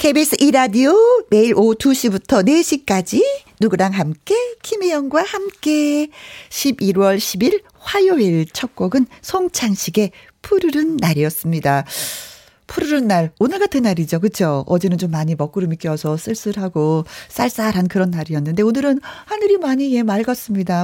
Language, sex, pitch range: Korean, female, 190-300 Hz